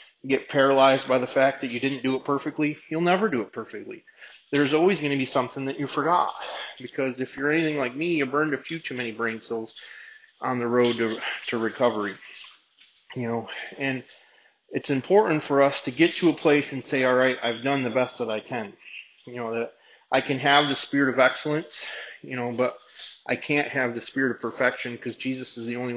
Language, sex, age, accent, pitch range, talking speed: English, male, 30-49, American, 130-155 Hz, 230 wpm